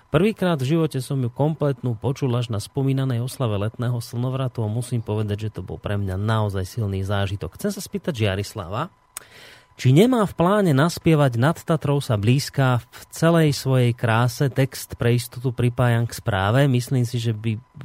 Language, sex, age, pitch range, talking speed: Slovak, male, 30-49, 115-145 Hz, 170 wpm